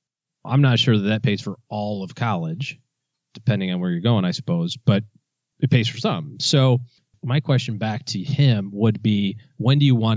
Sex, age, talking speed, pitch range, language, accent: male, 30-49, 200 wpm, 110-140 Hz, English, American